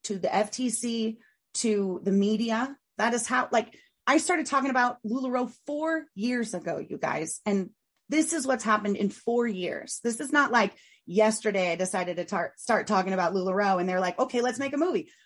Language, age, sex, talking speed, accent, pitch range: English, 30-49, female, 190 wpm, American, 210-255 Hz